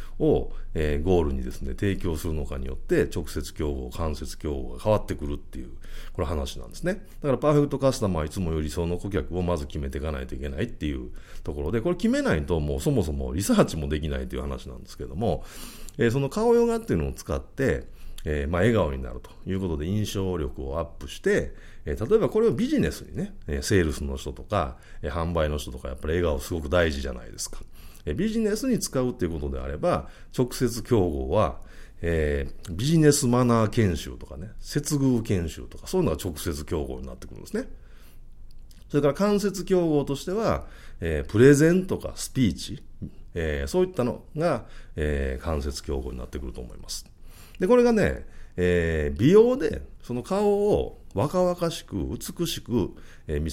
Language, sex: Japanese, male